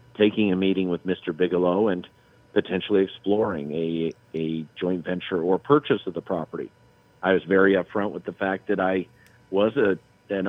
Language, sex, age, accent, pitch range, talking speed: English, male, 50-69, American, 85-95 Hz, 170 wpm